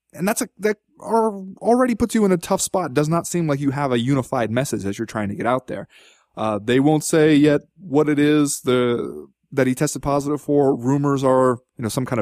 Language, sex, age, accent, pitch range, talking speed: English, male, 20-39, American, 120-150 Hz, 235 wpm